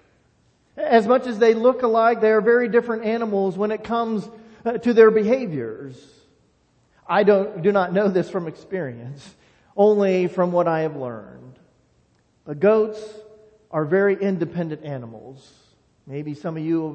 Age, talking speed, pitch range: 40-59, 150 wpm, 160-220 Hz